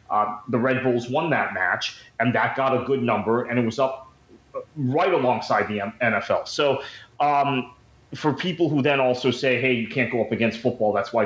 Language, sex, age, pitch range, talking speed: English, male, 30-49, 110-130 Hz, 210 wpm